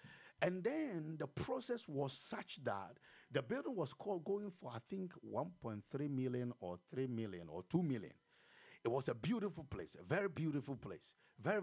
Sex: male